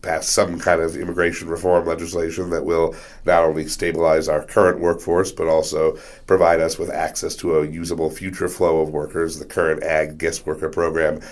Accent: American